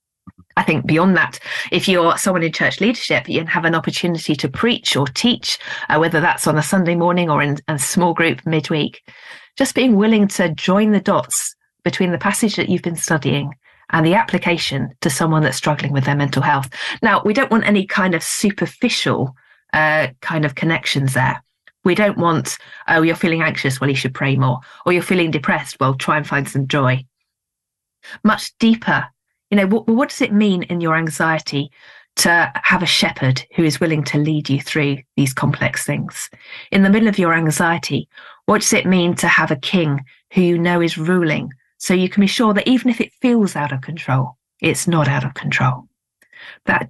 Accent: British